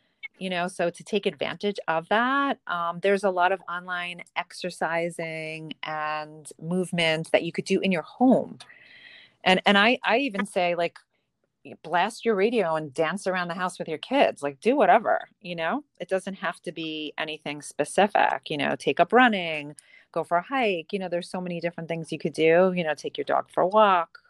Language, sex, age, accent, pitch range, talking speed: English, female, 30-49, American, 165-215 Hz, 200 wpm